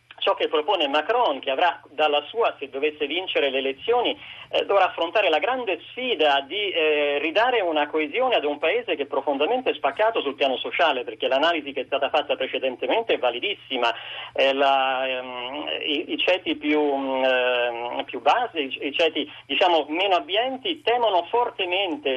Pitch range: 145-220 Hz